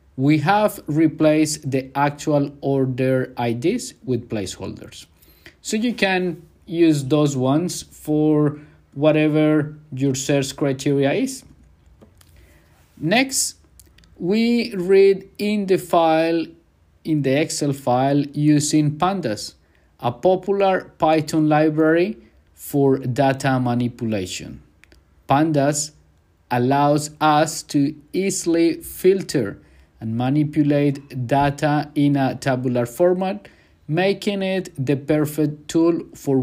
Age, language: 50-69, English